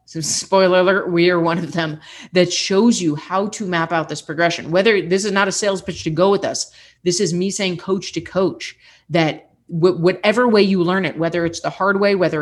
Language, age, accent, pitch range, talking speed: English, 30-49, American, 155-185 Hz, 225 wpm